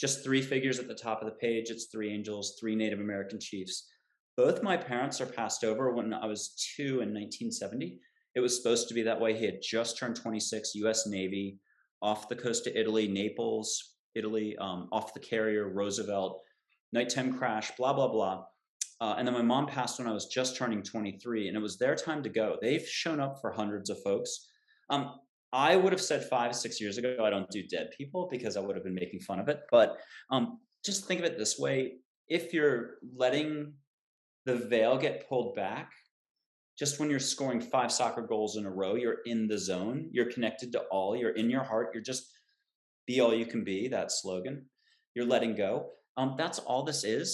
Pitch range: 110-140 Hz